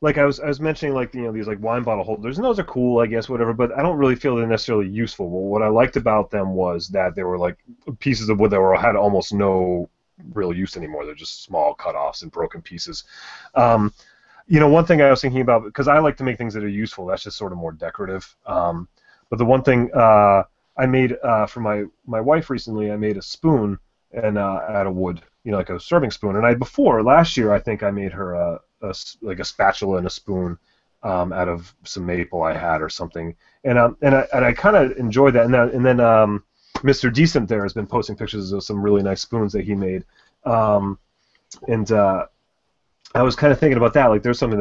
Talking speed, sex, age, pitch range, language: 245 wpm, male, 30-49, 100-130 Hz, English